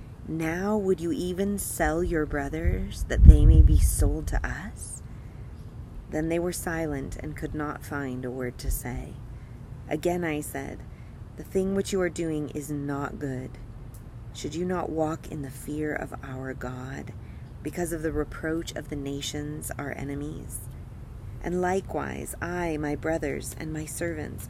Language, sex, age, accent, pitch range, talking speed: English, female, 30-49, American, 110-155 Hz, 160 wpm